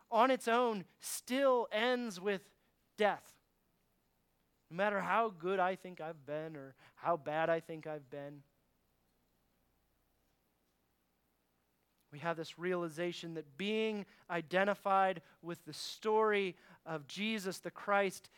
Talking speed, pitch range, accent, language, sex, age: 120 wpm, 145-205 Hz, American, English, male, 30-49